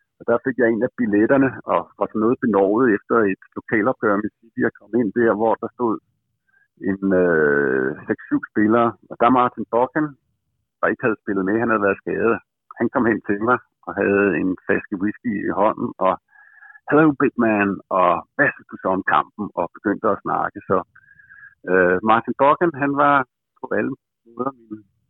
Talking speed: 190 wpm